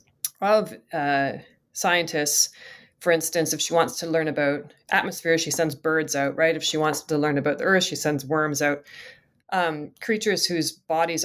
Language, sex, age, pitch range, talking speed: English, female, 30-49, 145-170 Hz, 180 wpm